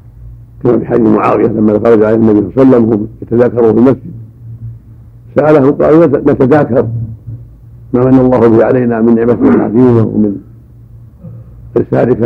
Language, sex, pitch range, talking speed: Arabic, male, 115-130 Hz, 130 wpm